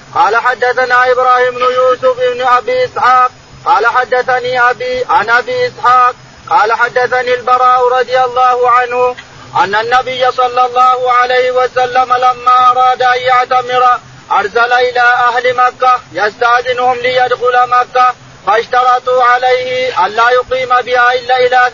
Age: 40-59